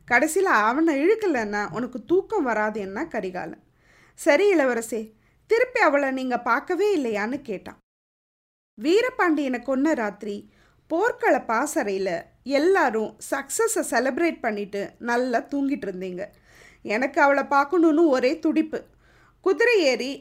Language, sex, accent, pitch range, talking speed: Tamil, female, native, 235-330 Hz, 105 wpm